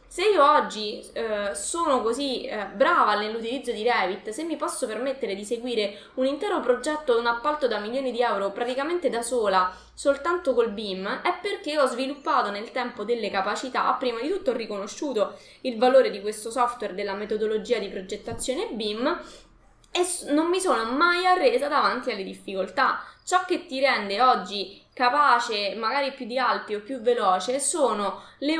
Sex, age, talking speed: female, 20-39, 165 wpm